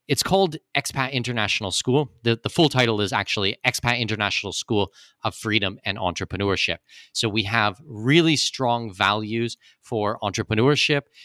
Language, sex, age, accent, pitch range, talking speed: English, male, 30-49, American, 105-130 Hz, 140 wpm